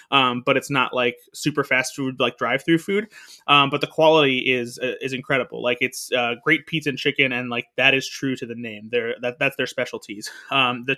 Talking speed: 225 wpm